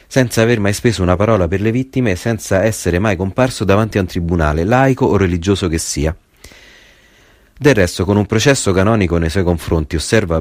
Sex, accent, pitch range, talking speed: male, native, 85-110 Hz, 190 wpm